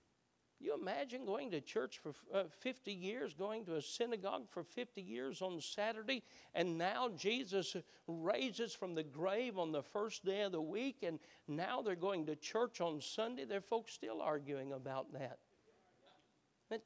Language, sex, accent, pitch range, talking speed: English, male, American, 175-275 Hz, 165 wpm